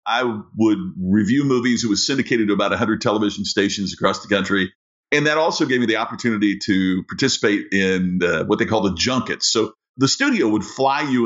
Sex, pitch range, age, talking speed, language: male, 100-145 Hz, 50-69, 195 wpm, English